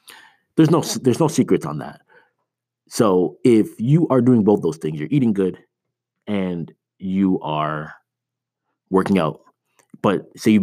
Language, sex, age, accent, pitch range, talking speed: English, male, 30-49, American, 85-100 Hz, 145 wpm